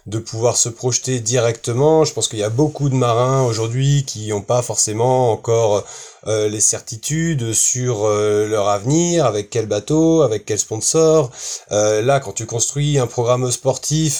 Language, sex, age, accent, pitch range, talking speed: French, male, 30-49, French, 115-140 Hz, 170 wpm